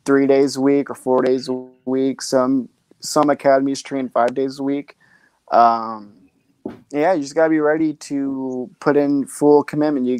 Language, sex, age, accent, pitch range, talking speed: English, male, 20-39, American, 125-145 Hz, 175 wpm